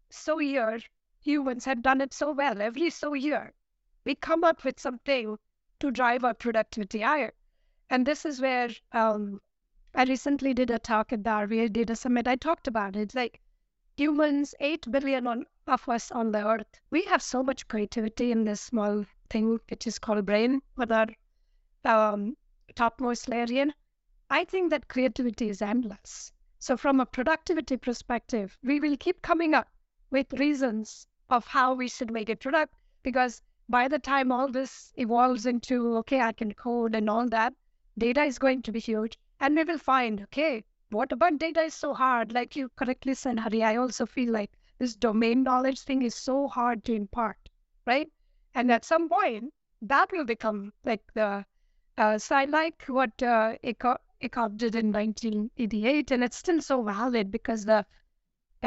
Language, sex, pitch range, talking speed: English, female, 225-275 Hz, 175 wpm